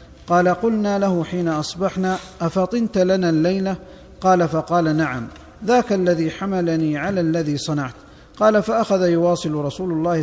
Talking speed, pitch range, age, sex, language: 130 wpm, 155-195 Hz, 50-69, male, Arabic